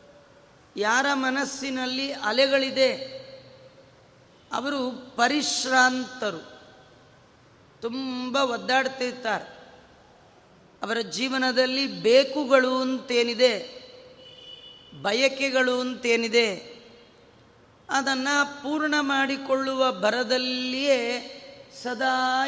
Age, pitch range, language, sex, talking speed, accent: 30-49, 235-270 Hz, Kannada, female, 50 wpm, native